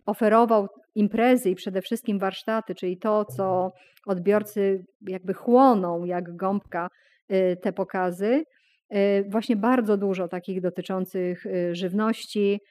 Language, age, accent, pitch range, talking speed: Polish, 30-49, native, 180-205 Hz, 105 wpm